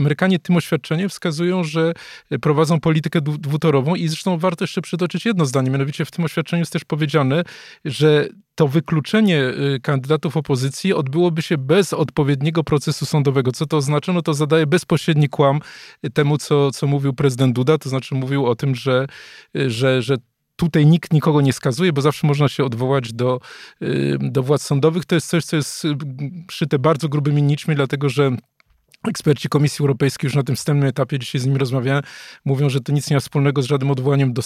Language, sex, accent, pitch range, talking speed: Polish, male, native, 140-165 Hz, 180 wpm